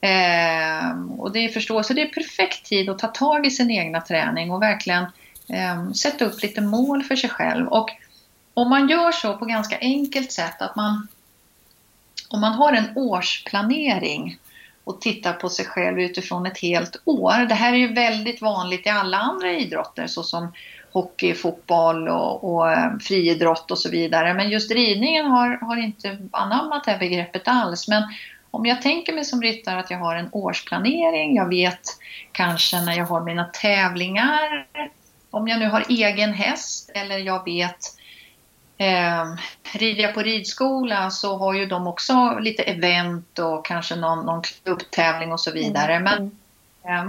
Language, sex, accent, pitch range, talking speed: Swedish, female, native, 175-235 Hz, 170 wpm